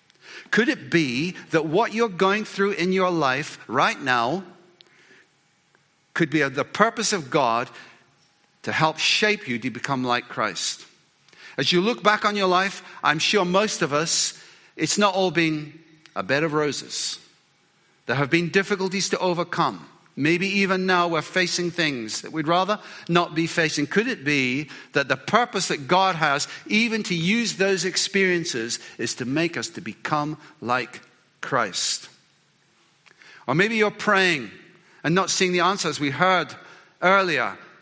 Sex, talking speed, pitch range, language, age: male, 155 wpm, 150-190 Hz, English, 50-69